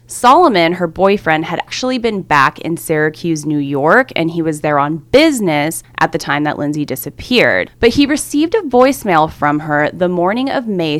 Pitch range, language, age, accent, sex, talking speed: 155-225 Hz, English, 20-39, American, female, 185 wpm